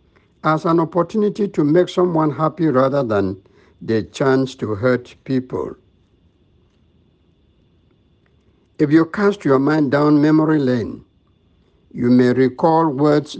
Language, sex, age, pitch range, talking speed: English, male, 60-79, 125-165 Hz, 115 wpm